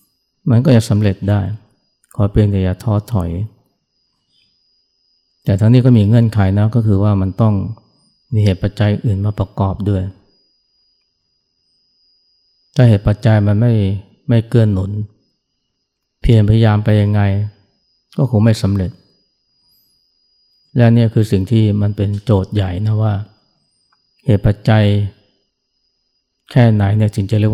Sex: male